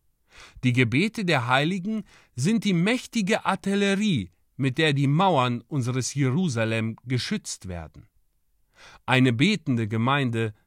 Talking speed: 105 wpm